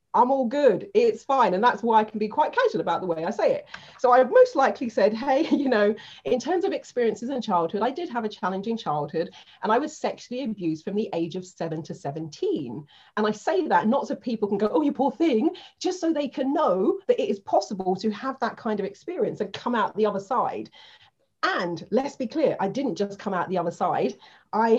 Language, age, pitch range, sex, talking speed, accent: English, 40-59, 180-260 Hz, female, 240 wpm, British